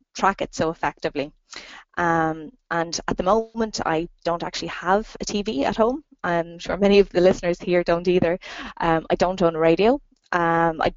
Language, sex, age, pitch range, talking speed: Finnish, female, 20-39, 160-200 Hz, 180 wpm